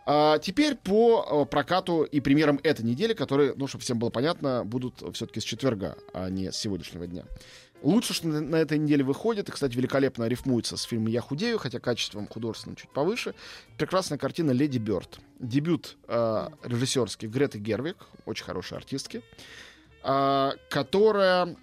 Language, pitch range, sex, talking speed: Russian, 120-165 Hz, male, 145 wpm